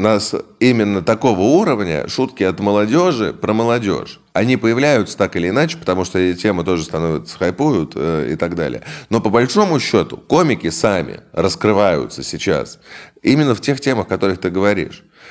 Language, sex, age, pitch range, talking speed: Russian, male, 20-39, 90-115 Hz, 165 wpm